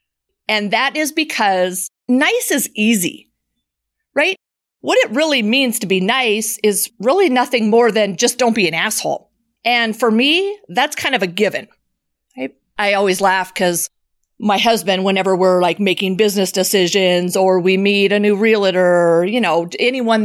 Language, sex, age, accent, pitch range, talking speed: English, female, 40-59, American, 195-245 Hz, 160 wpm